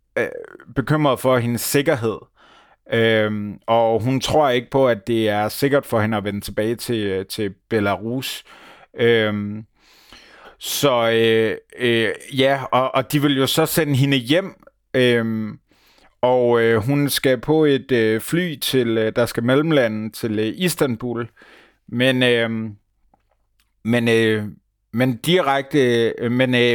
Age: 30-49